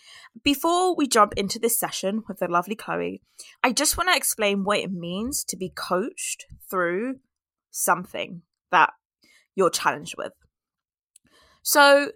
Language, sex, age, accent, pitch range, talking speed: English, female, 20-39, British, 185-250 Hz, 140 wpm